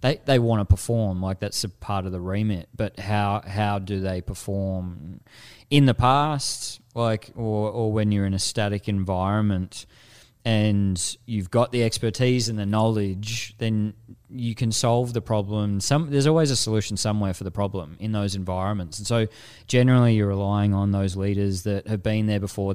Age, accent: 20-39, Australian